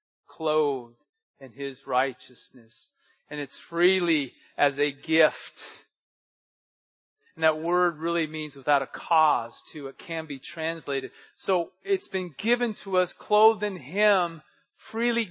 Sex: male